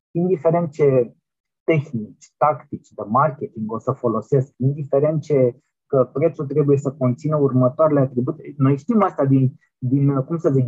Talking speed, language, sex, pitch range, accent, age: 145 wpm, Romanian, male, 130-155 Hz, native, 20-39